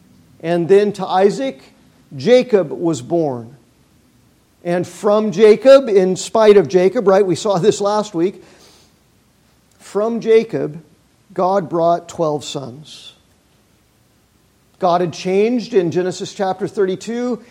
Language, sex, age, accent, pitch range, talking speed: English, male, 50-69, American, 165-215 Hz, 115 wpm